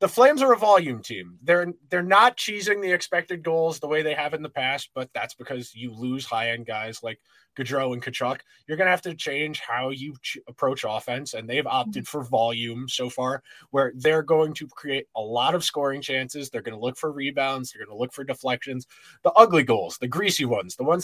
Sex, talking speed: male, 220 wpm